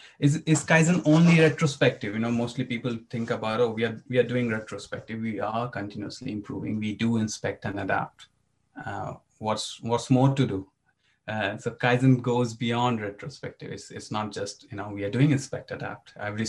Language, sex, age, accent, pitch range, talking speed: English, male, 30-49, Indian, 110-130 Hz, 185 wpm